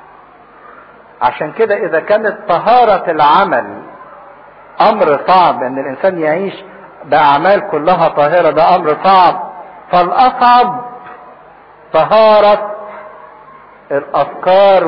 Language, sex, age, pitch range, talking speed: English, male, 50-69, 160-220 Hz, 80 wpm